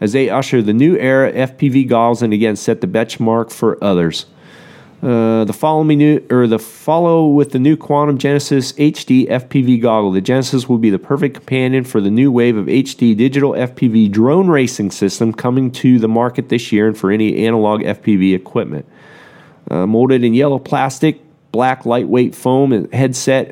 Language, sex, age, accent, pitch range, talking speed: English, male, 40-59, American, 110-135 Hz, 180 wpm